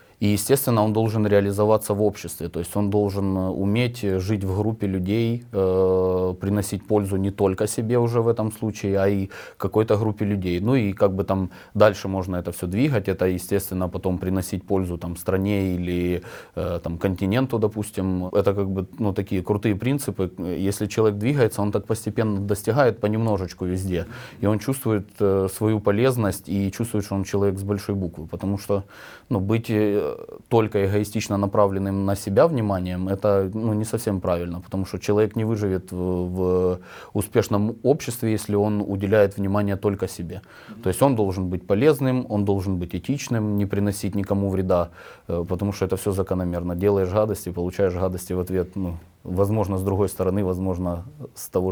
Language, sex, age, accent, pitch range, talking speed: Russian, male, 20-39, native, 95-105 Hz, 170 wpm